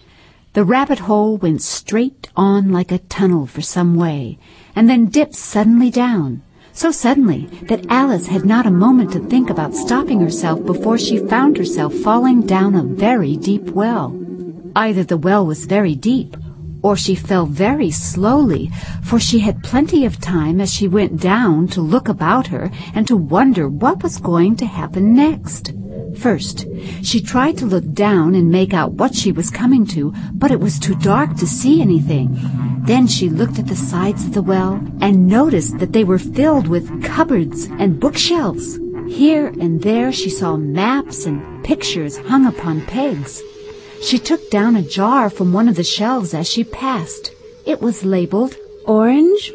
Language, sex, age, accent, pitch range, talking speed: English, female, 60-79, American, 180-250 Hz, 175 wpm